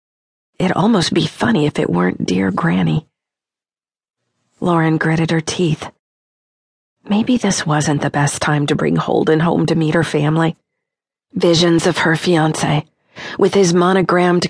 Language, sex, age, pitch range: English, female, 40-59, 155-185 Hz